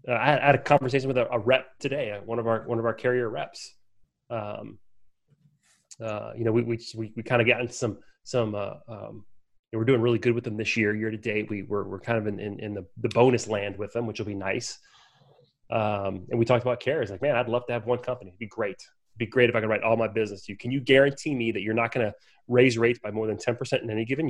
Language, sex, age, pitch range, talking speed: English, male, 30-49, 110-130 Hz, 280 wpm